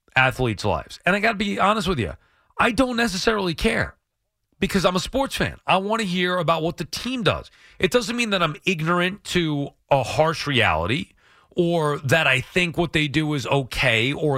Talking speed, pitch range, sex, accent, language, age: 200 wpm, 125-185 Hz, male, American, English, 40-59